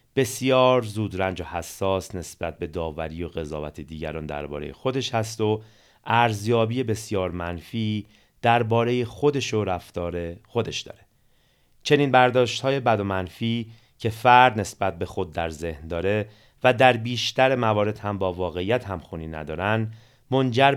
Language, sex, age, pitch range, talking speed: Persian, male, 30-49, 85-120 Hz, 140 wpm